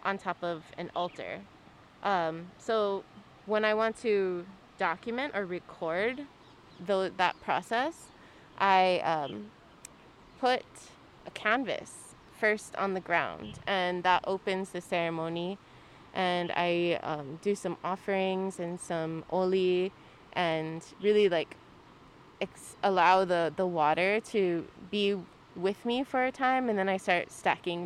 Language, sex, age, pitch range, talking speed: English, female, 20-39, 175-210 Hz, 130 wpm